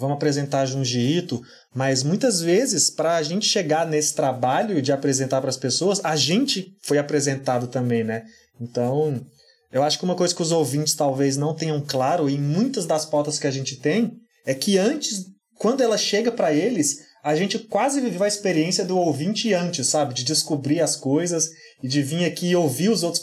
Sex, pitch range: male, 130-170 Hz